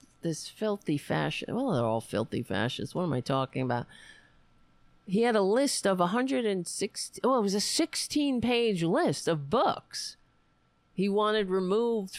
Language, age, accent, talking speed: English, 40-59, American, 160 wpm